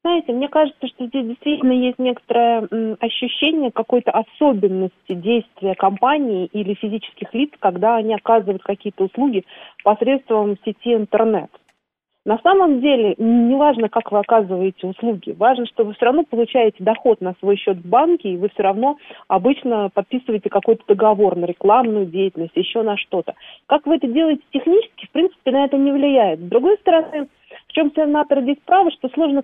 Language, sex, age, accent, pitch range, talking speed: Russian, female, 40-59, native, 210-280 Hz, 165 wpm